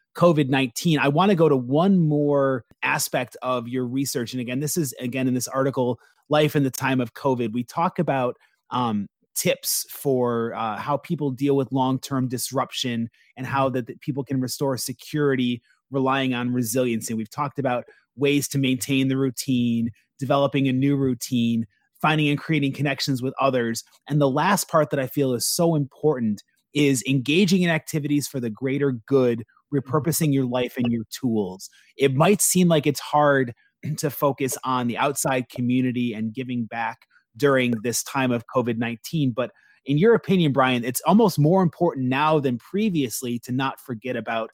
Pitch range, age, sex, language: 125-145 Hz, 30-49, male, English